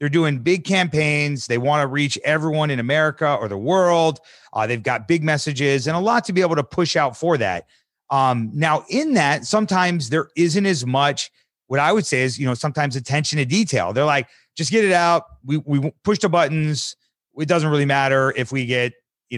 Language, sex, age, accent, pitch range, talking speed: English, male, 30-49, American, 130-165 Hz, 215 wpm